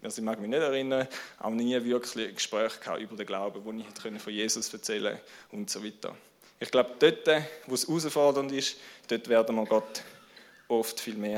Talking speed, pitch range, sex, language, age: 185 wpm, 115-145 Hz, male, German, 20-39